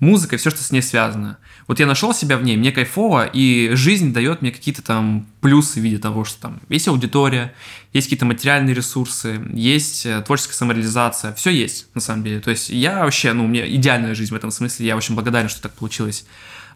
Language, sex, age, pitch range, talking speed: Russian, male, 20-39, 110-140 Hz, 210 wpm